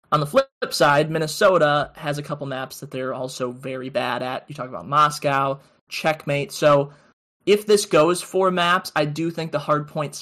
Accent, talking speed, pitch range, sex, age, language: American, 190 wpm, 135-155 Hz, male, 20-39, English